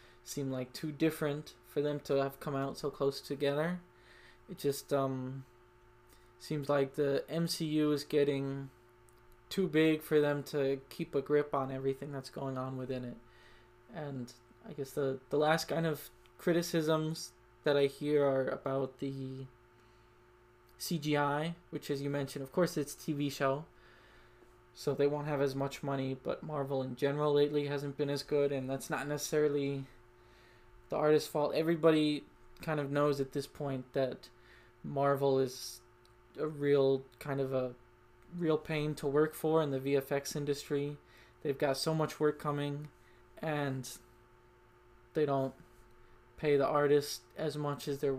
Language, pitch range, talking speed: English, 135-150 Hz, 155 wpm